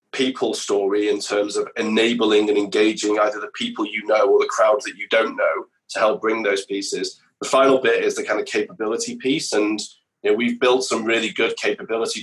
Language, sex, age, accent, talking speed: English, male, 20-39, British, 200 wpm